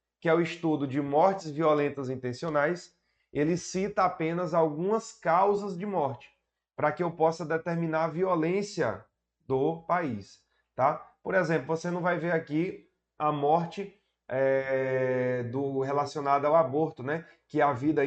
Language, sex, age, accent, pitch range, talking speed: Portuguese, male, 20-39, Brazilian, 140-175 Hz, 135 wpm